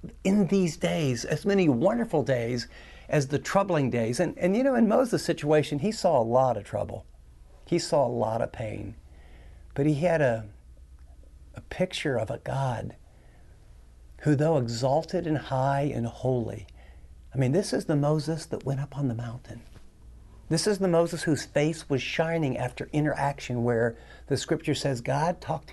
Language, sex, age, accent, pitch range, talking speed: English, male, 50-69, American, 115-165 Hz, 175 wpm